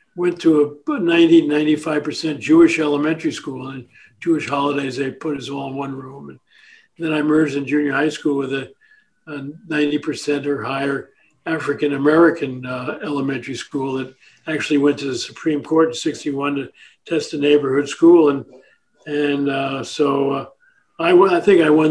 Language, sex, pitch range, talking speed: English, male, 140-165 Hz, 165 wpm